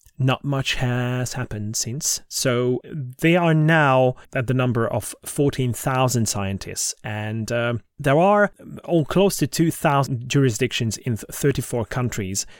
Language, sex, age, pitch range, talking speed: English, male, 30-49, 115-145 Hz, 130 wpm